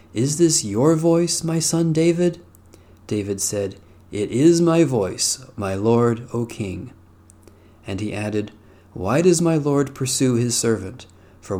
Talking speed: 145 wpm